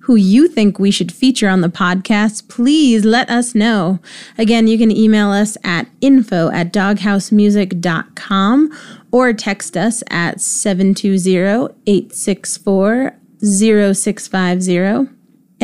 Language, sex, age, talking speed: English, female, 30-49, 100 wpm